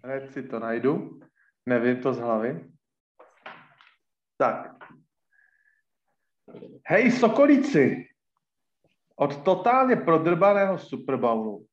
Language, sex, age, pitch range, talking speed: Slovak, male, 40-59, 130-165 Hz, 75 wpm